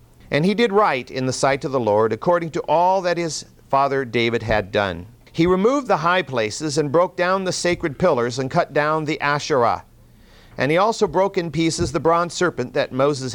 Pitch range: 130-180 Hz